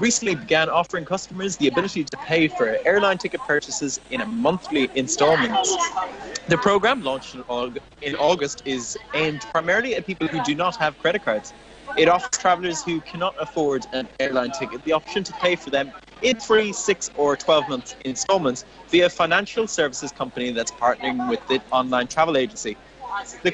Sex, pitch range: male, 135-195 Hz